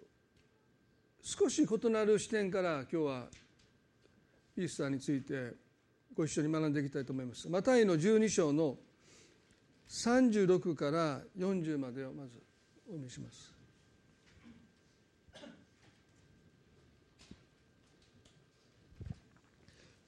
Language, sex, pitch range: Japanese, male, 150-195 Hz